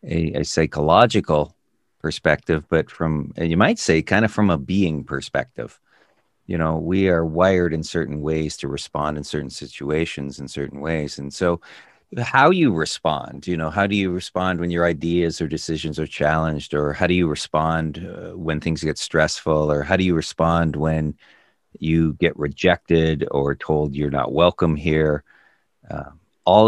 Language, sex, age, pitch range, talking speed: English, male, 40-59, 75-90 Hz, 170 wpm